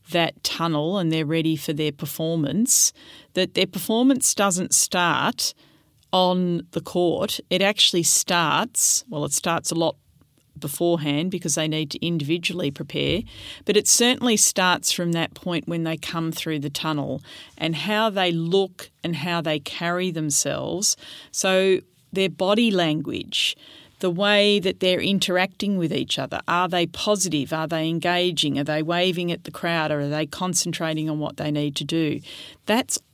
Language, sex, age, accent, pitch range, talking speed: English, female, 40-59, Australian, 155-185 Hz, 160 wpm